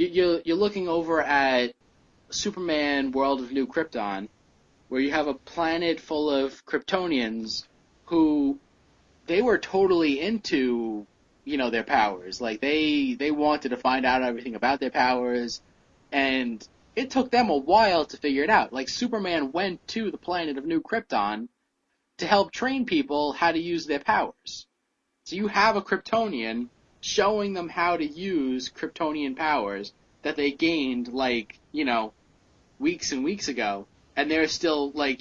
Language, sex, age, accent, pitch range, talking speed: English, male, 20-39, American, 120-180 Hz, 155 wpm